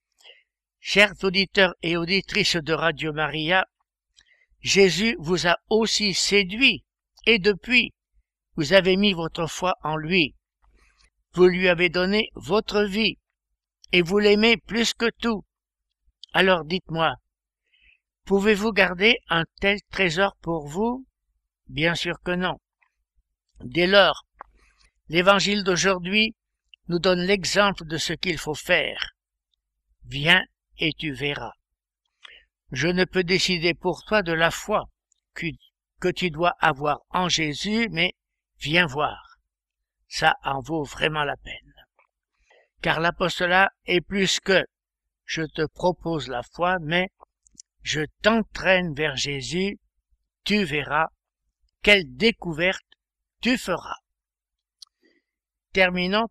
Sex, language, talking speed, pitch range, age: male, French, 115 wpm, 155-200 Hz, 60-79